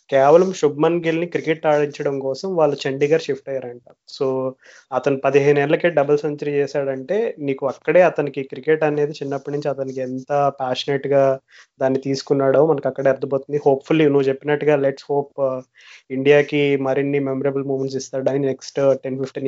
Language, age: Telugu, 20-39